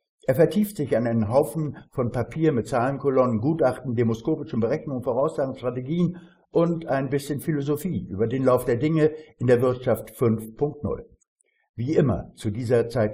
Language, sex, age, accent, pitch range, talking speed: German, male, 60-79, German, 120-150 Hz, 150 wpm